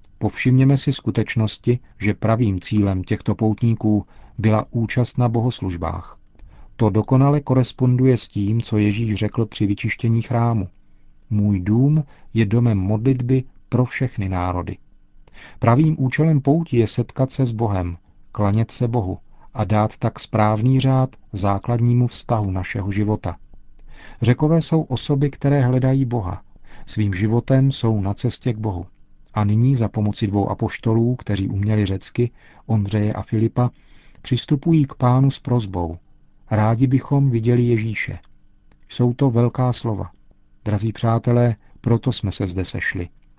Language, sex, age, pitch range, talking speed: Czech, male, 40-59, 100-125 Hz, 135 wpm